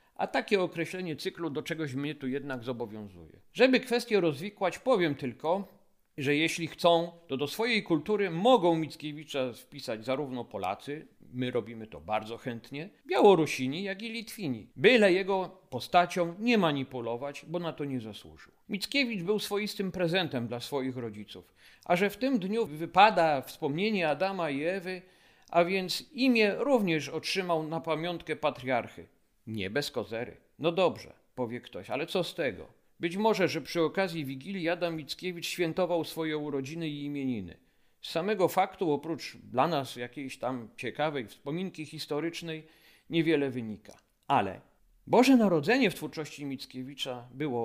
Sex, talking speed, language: male, 145 wpm, Polish